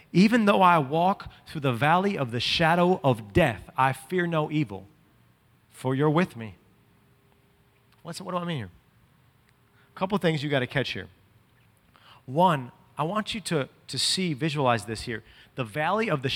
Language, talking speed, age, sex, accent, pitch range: English, 170 wpm, 30-49, male, American, 125-170 Hz